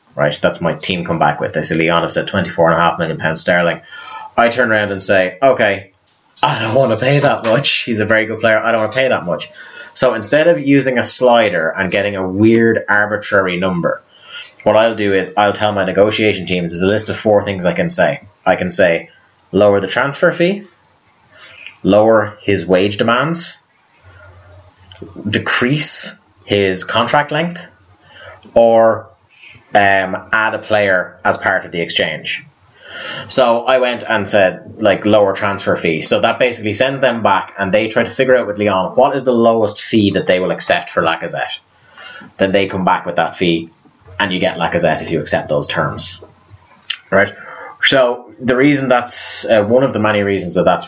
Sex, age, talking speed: male, 30-49, 190 wpm